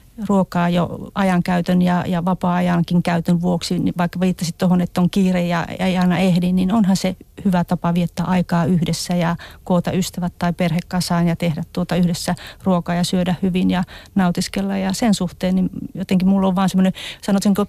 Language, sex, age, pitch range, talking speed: Finnish, female, 40-59, 175-200 Hz, 180 wpm